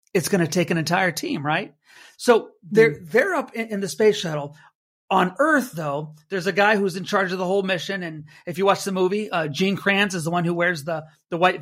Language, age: English, 40-59